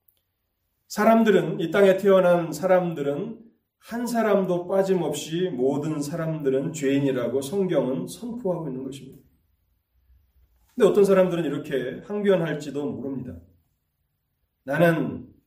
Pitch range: 110-175 Hz